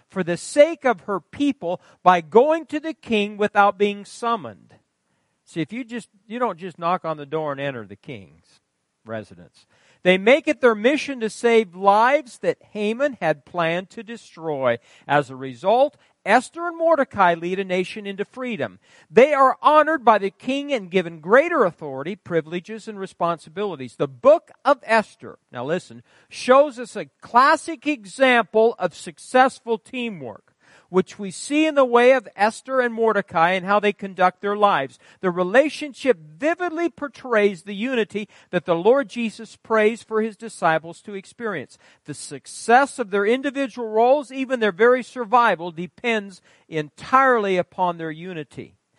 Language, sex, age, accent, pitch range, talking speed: English, male, 50-69, American, 170-245 Hz, 160 wpm